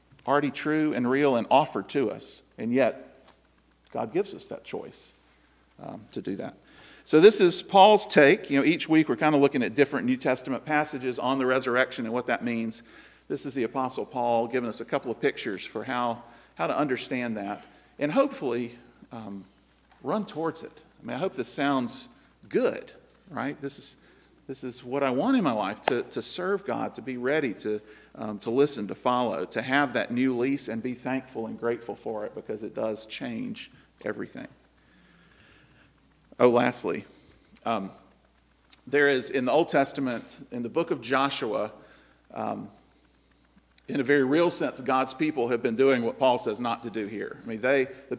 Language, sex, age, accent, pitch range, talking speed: English, male, 50-69, American, 120-145 Hz, 190 wpm